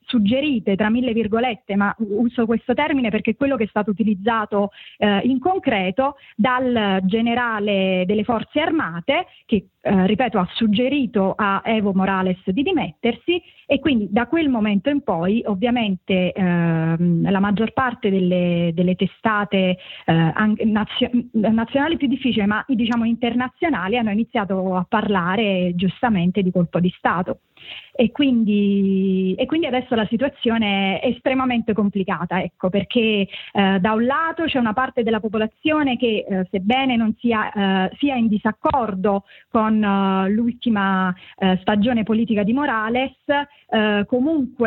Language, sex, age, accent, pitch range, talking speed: Italian, female, 30-49, native, 195-245 Hz, 140 wpm